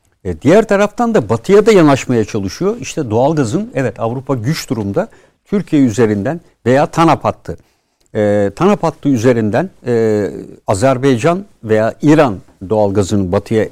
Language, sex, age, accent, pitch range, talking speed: Turkish, male, 60-79, native, 115-160 Hz, 115 wpm